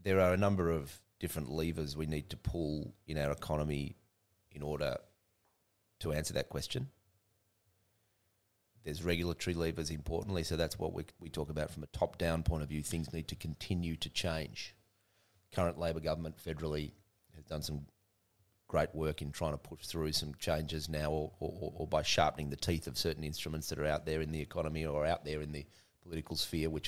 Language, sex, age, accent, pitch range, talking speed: English, male, 30-49, Australian, 75-90 Hz, 190 wpm